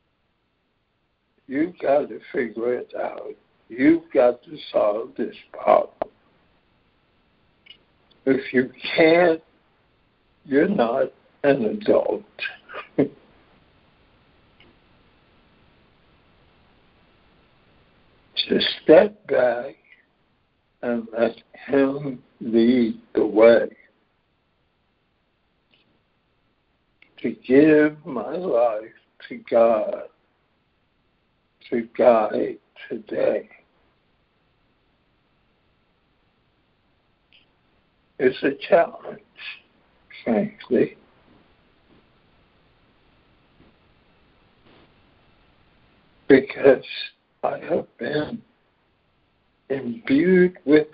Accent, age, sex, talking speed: American, 60-79, male, 55 wpm